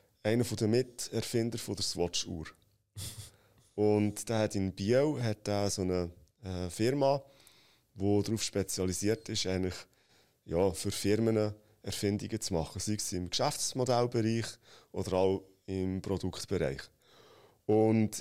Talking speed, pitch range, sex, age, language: 115 wpm, 100-120 Hz, male, 30-49, German